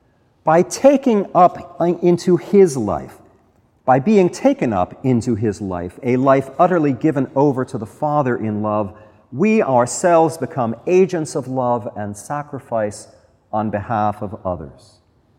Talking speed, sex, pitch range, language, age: 135 wpm, male, 105-145 Hz, English, 40-59